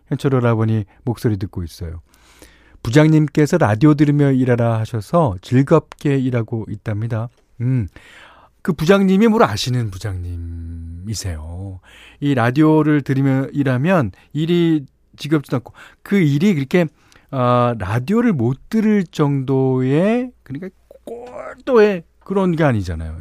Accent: native